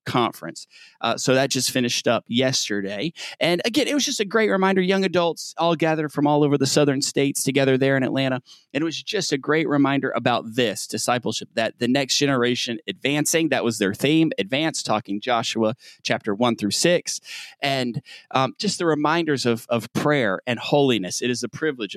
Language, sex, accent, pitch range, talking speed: English, male, American, 115-145 Hz, 190 wpm